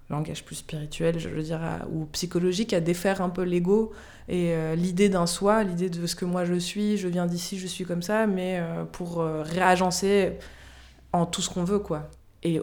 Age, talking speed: 20-39, 215 wpm